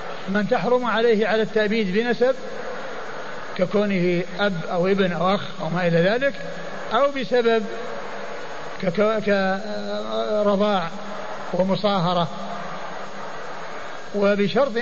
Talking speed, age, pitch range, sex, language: 90 wpm, 60-79, 185-215 Hz, male, Arabic